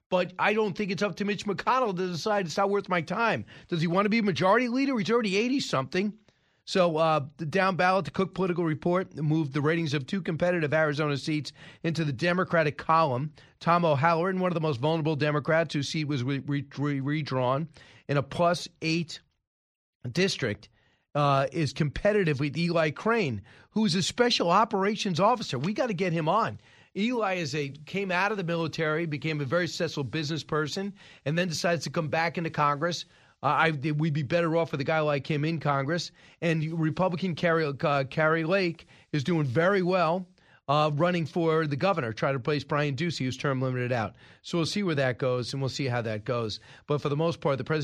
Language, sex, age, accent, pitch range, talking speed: English, male, 40-59, American, 140-175 Hz, 205 wpm